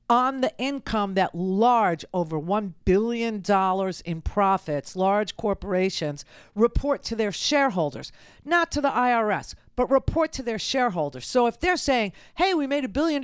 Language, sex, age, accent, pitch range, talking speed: English, female, 50-69, American, 180-270 Hz, 155 wpm